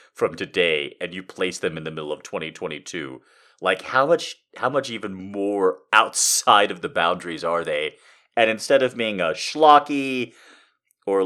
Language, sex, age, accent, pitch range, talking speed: English, male, 30-49, American, 105-175 Hz, 165 wpm